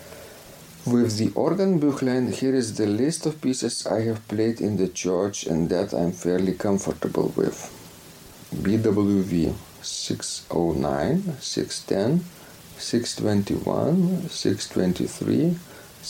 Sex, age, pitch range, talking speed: male, 50-69, 95-140 Hz, 120 wpm